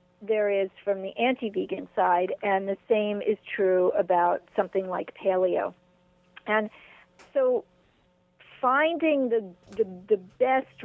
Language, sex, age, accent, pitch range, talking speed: English, female, 50-69, American, 185-220 Hz, 120 wpm